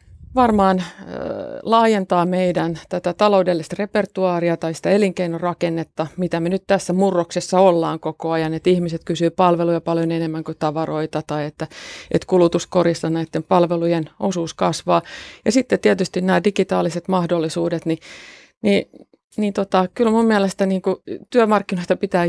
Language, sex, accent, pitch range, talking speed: Finnish, female, native, 160-190 Hz, 135 wpm